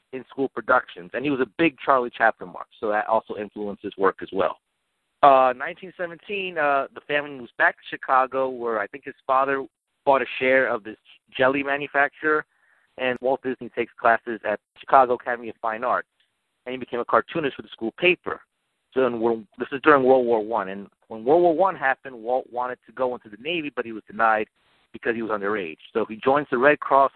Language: English